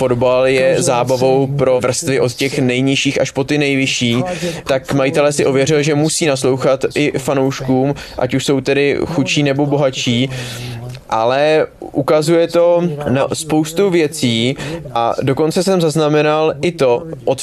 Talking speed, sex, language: 140 wpm, male, Czech